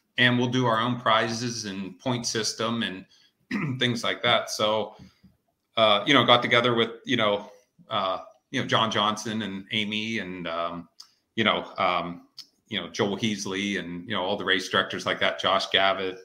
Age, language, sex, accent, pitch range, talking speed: 40-59, English, male, American, 100-120 Hz, 180 wpm